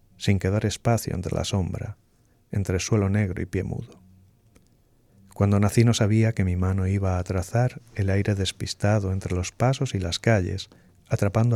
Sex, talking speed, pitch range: male, 165 wpm, 95-115 Hz